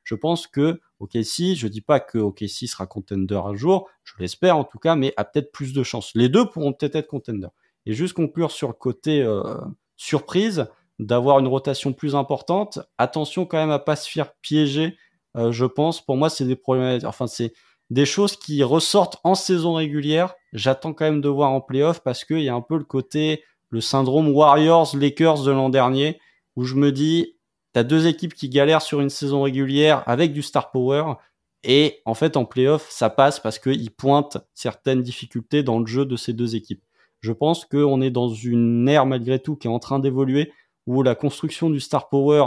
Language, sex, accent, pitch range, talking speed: French, male, French, 120-150 Hz, 210 wpm